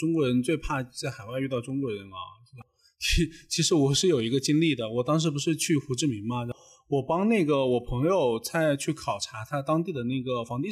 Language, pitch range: Chinese, 125-165 Hz